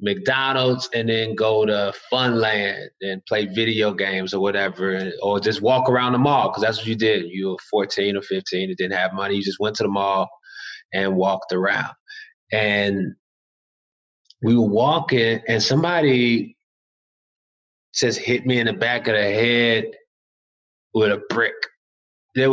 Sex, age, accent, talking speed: male, 20-39, American, 160 wpm